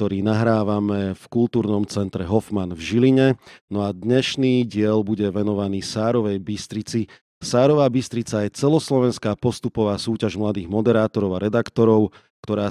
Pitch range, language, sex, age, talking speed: 105-125 Hz, Slovak, male, 30-49, 130 wpm